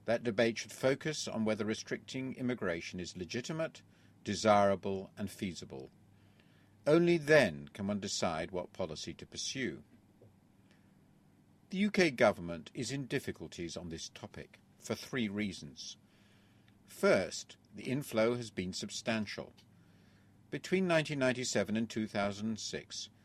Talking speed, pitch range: 115 wpm, 100-125 Hz